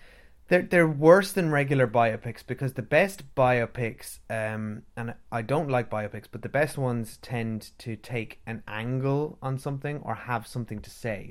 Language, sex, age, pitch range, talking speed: English, male, 20-39, 105-125 Hz, 170 wpm